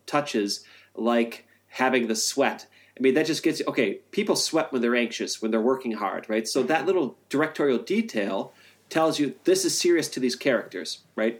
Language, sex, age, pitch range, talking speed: English, male, 30-49, 115-145 Hz, 190 wpm